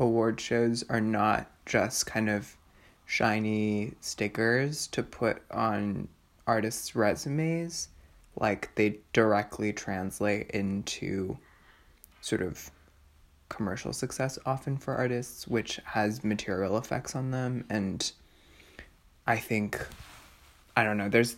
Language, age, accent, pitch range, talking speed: English, 20-39, American, 95-120 Hz, 110 wpm